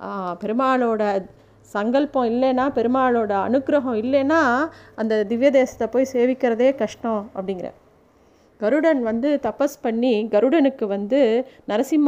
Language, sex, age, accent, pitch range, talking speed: Tamil, female, 30-49, native, 205-255 Hz, 100 wpm